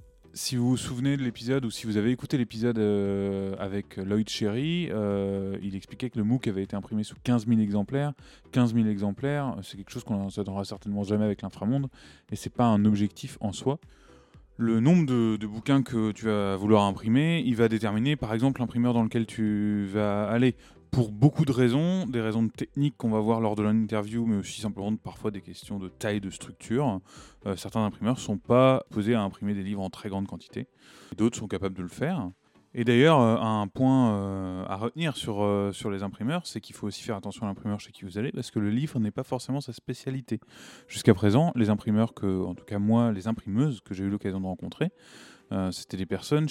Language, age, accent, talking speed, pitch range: French, 20-39, French, 220 wpm, 100-125 Hz